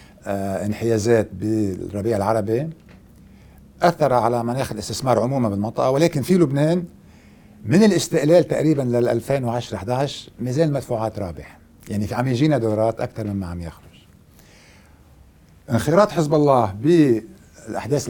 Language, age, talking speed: Arabic, 60-79, 115 wpm